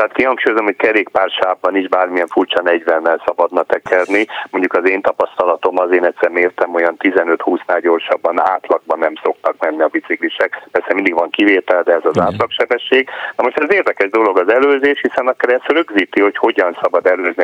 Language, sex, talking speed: Hungarian, male, 170 wpm